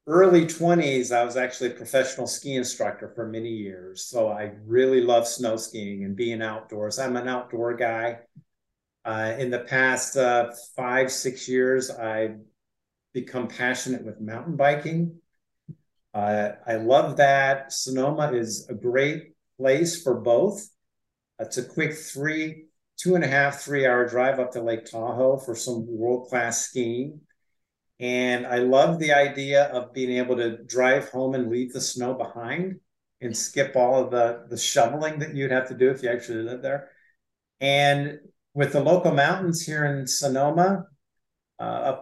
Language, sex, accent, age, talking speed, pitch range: English, male, American, 50-69, 160 wpm, 120-140 Hz